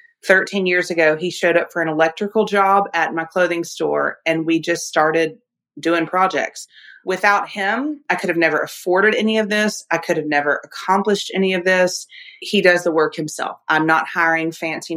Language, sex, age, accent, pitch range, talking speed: English, female, 30-49, American, 155-190 Hz, 190 wpm